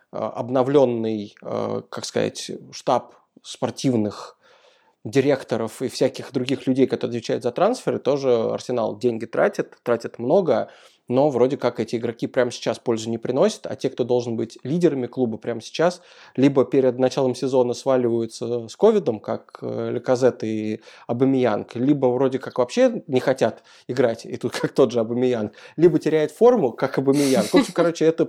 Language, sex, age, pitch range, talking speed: Russian, male, 20-39, 125-155 Hz, 155 wpm